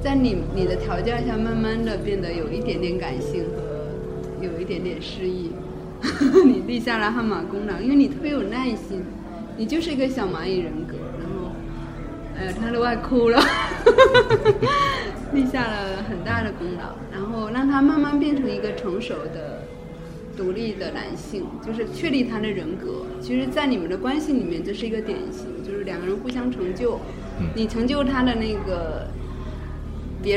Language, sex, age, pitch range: Chinese, female, 20-39, 170-265 Hz